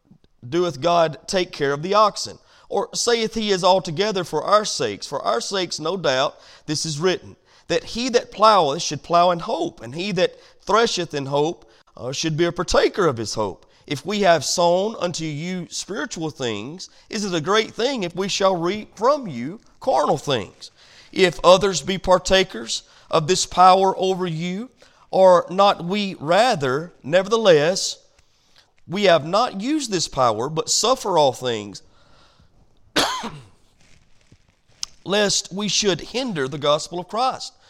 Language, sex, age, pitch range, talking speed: English, male, 40-59, 150-195 Hz, 155 wpm